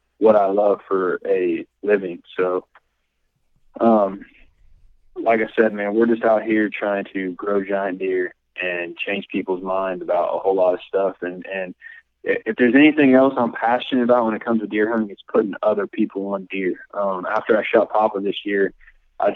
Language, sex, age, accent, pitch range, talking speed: English, male, 20-39, American, 95-115 Hz, 185 wpm